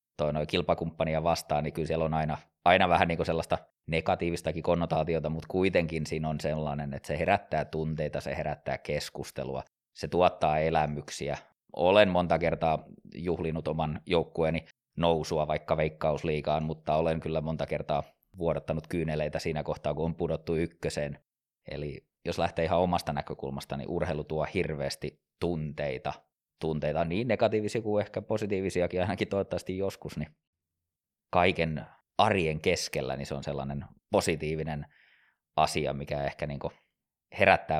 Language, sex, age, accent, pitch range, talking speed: Finnish, male, 20-39, native, 75-85 Hz, 140 wpm